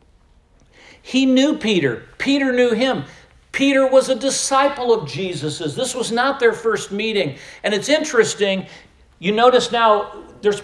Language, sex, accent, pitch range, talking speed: English, male, American, 155-220 Hz, 140 wpm